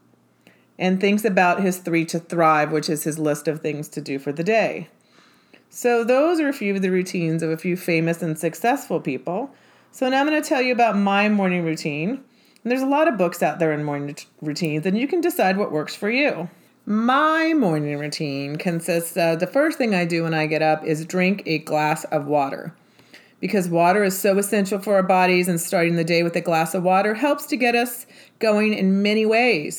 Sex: female